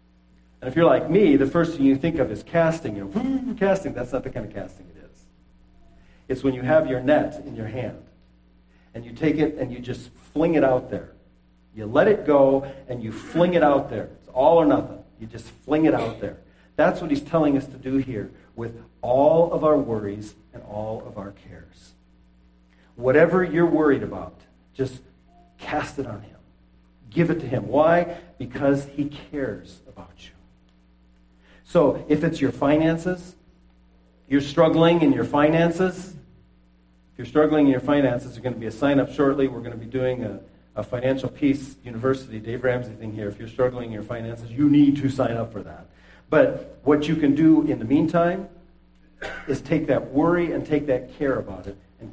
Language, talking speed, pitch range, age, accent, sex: English, 195 wpm, 100-145 Hz, 40-59, American, male